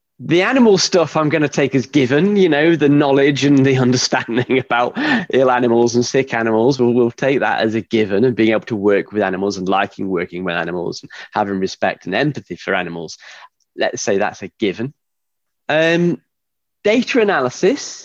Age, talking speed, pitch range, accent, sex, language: 20-39, 185 wpm, 110-150 Hz, British, male, English